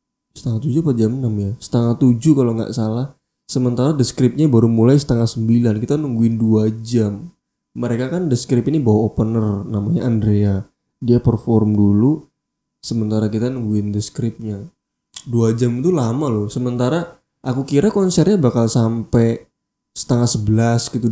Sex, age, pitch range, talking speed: male, 20-39, 110-135 Hz, 140 wpm